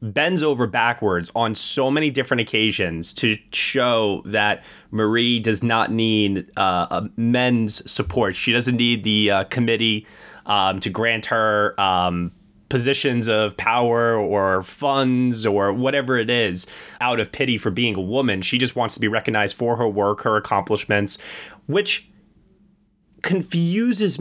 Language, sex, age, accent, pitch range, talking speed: English, male, 20-39, American, 110-140 Hz, 145 wpm